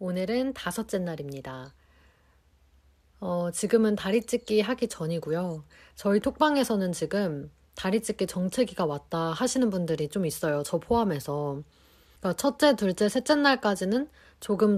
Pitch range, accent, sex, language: 160-215 Hz, native, female, Korean